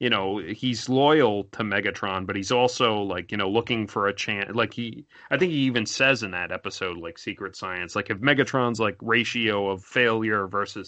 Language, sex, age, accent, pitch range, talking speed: English, male, 30-49, American, 100-125 Hz, 205 wpm